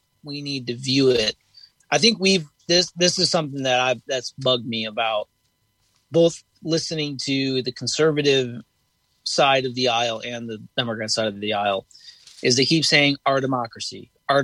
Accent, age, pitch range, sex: American, 30-49, 125-155 Hz, male